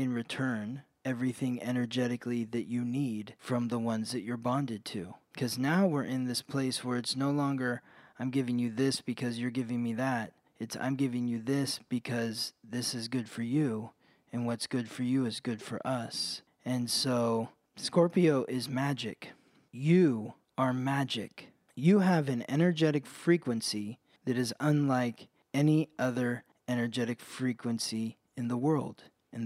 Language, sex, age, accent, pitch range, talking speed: English, male, 20-39, American, 120-140 Hz, 155 wpm